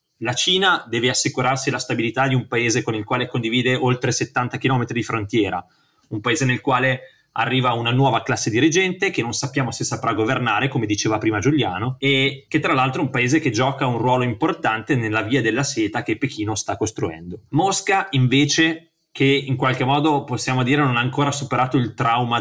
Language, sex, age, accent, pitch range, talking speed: Italian, male, 30-49, native, 115-140 Hz, 190 wpm